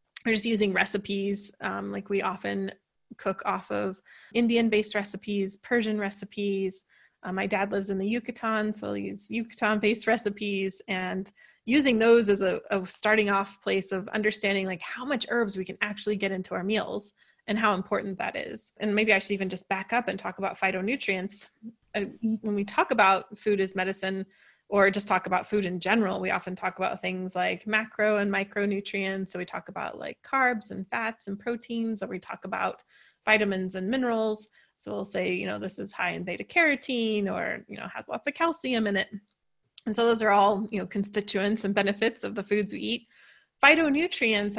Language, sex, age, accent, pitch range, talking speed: English, female, 20-39, American, 195-220 Hz, 190 wpm